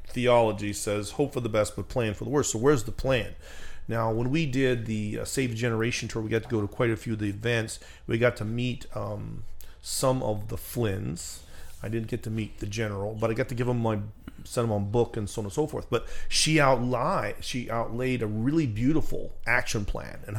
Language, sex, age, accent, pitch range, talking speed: English, male, 40-59, American, 100-125 Hz, 235 wpm